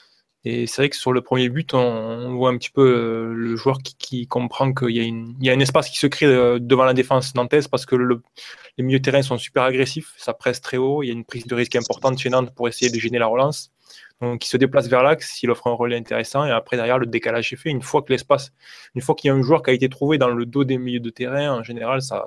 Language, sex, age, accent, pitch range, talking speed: French, male, 20-39, French, 120-140 Hz, 290 wpm